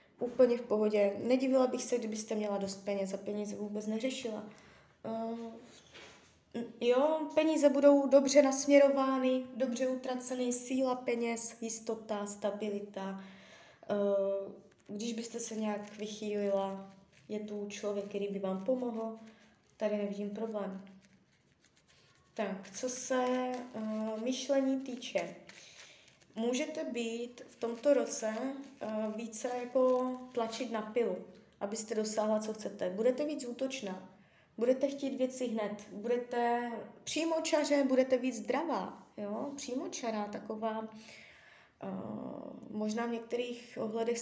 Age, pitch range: 20-39, 210-255 Hz